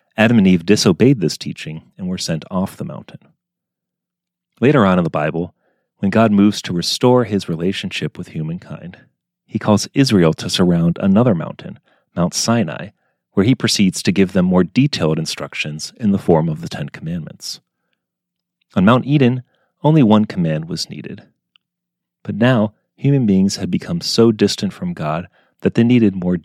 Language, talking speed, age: English, 165 wpm, 30-49